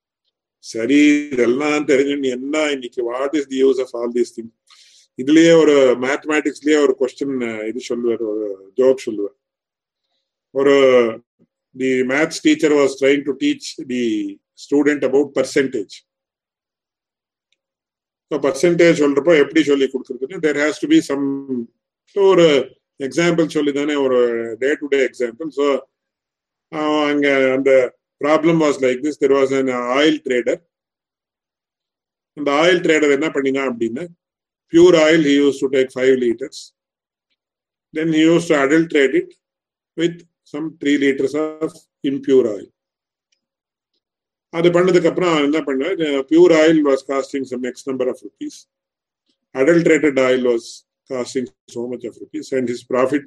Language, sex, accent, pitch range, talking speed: English, male, Indian, 130-160 Hz, 105 wpm